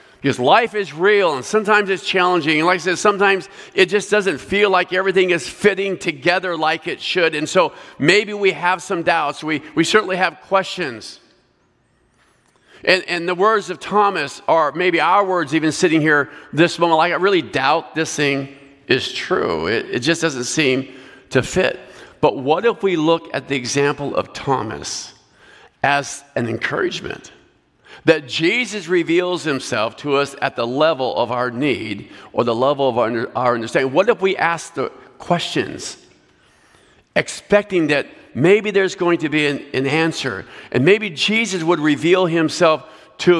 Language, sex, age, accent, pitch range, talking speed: English, male, 50-69, American, 140-190 Hz, 165 wpm